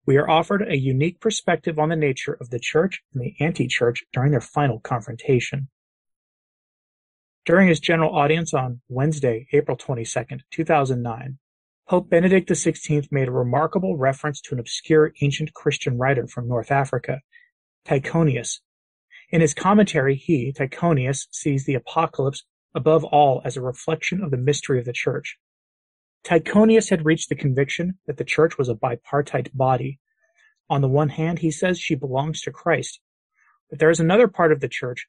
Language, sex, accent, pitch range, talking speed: English, male, American, 135-165 Hz, 160 wpm